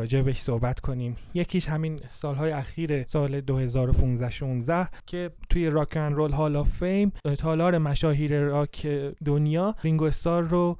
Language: Persian